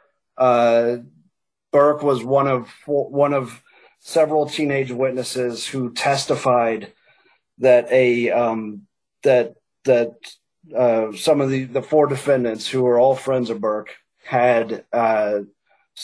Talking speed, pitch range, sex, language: 120 wpm, 115-135 Hz, male, English